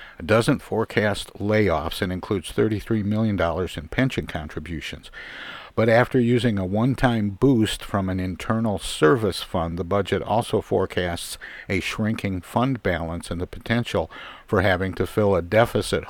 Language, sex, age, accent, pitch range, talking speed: English, male, 50-69, American, 95-115 Hz, 140 wpm